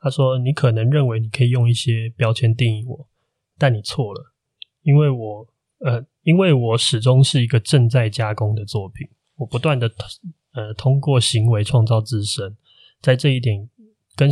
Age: 20-39